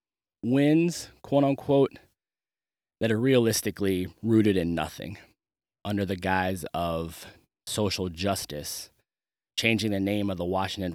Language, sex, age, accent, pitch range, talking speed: English, male, 20-39, American, 95-110 Hz, 110 wpm